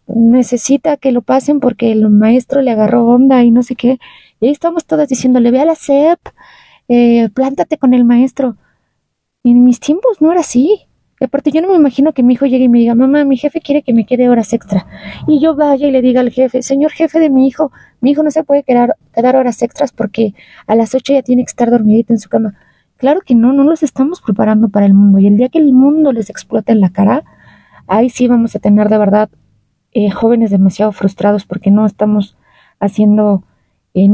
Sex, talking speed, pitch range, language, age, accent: female, 220 wpm, 210-265 Hz, Spanish, 30-49, Mexican